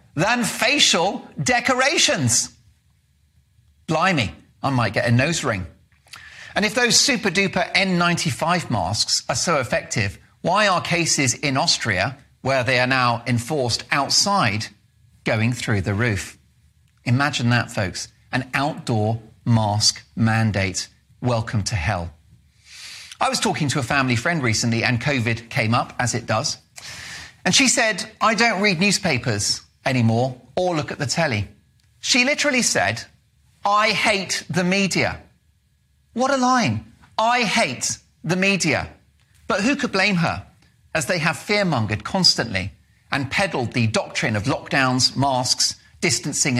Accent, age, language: British, 40-59, English